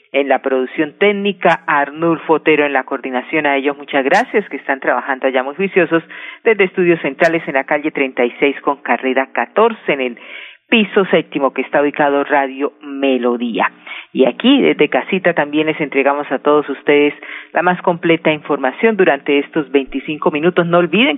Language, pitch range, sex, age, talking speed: Spanish, 140-185 Hz, female, 40-59, 170 wpm